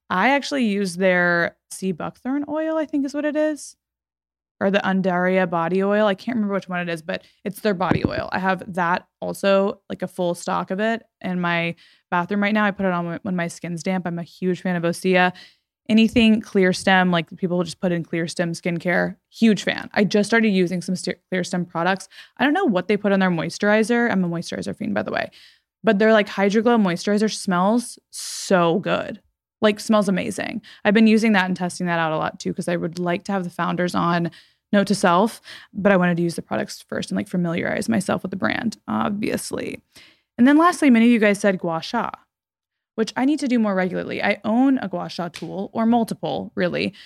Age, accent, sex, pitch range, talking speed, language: 20-39, American, female, 175-215 Hz, 220 wpm, English